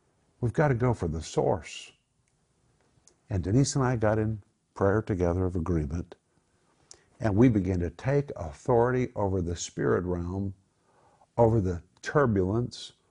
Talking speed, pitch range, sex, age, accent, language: 135 wpm, 90-125 Hz, male, 60-79, American, English